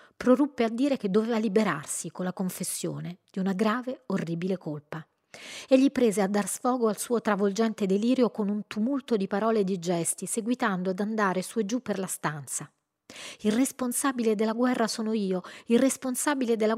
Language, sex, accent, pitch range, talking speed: Italian, female, native, 180-240 Hz, 175 wpm